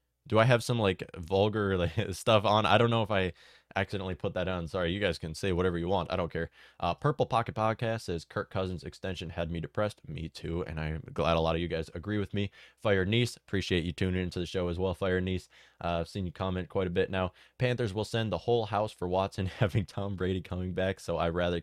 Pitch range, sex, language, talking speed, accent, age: 85-105 Hz, male, English, 250 wpm, American, 20-39